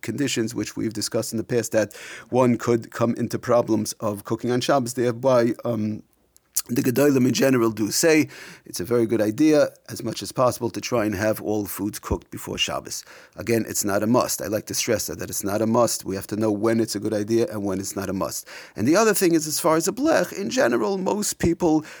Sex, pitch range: male, 105-135 Hz